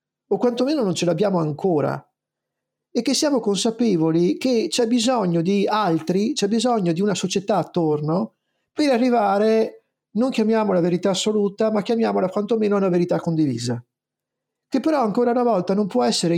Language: Italian